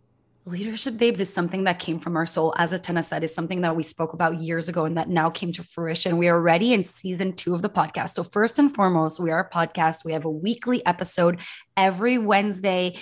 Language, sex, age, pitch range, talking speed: English, female, 20-39, 170-195 Hz, 230 wpm